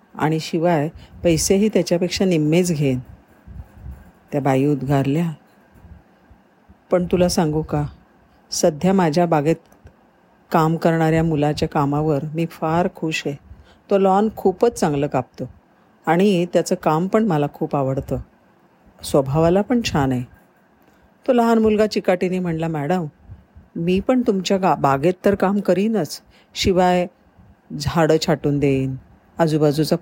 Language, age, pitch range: Marathi, 40-59, 145-180 Hz